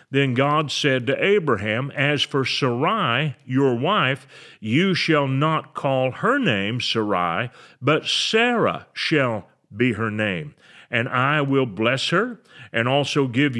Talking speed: 135 wpm